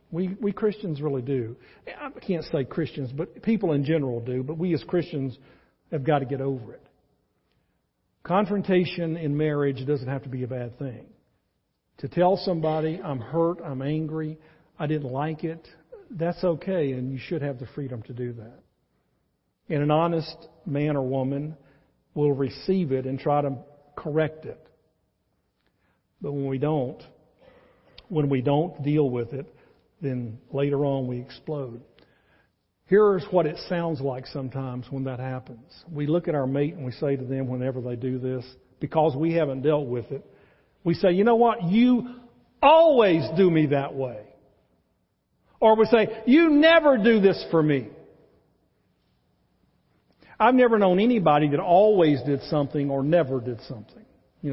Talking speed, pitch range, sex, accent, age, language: 160 wpm, 135-170 Hz, male, American, 50-69, English